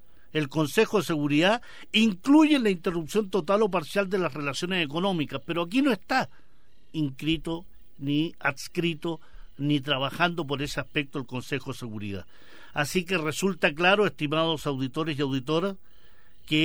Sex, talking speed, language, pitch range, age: male, 140 wpm, Spanish, 145-190 Hz, 50-69